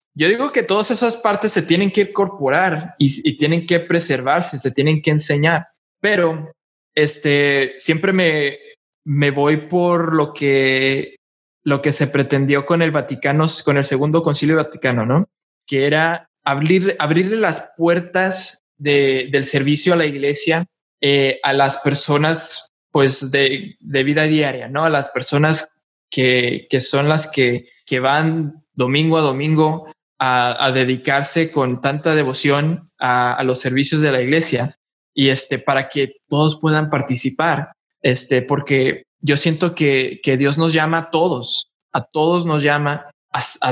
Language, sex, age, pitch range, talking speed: English, male, 20-39, 135-165 Hz, 155 wpm